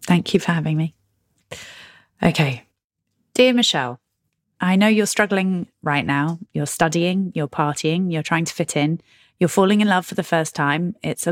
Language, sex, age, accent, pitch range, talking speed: English, female, 30-49, British, 160-210 Hz, 175 wpm